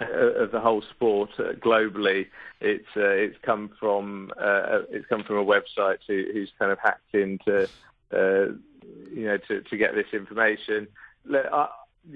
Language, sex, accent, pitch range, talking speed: English, male, British, 100-135 Hz, 155 wpm